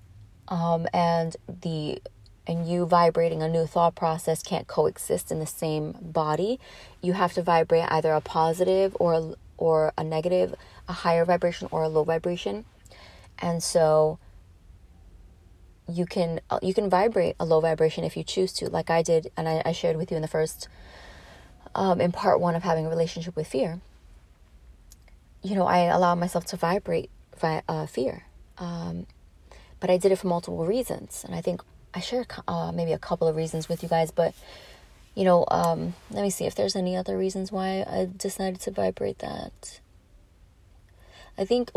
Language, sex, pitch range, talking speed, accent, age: English, female, 130-180 Hz, 175 wpm, American, 30-49